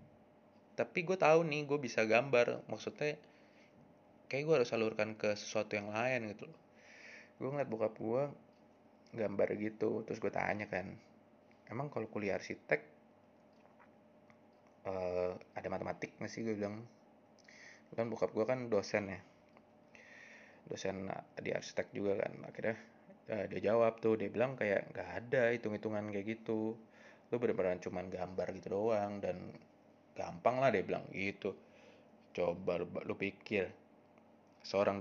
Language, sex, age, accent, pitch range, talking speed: Indonesian, male, 20-39, native, 100-120 Hz, 135 wpm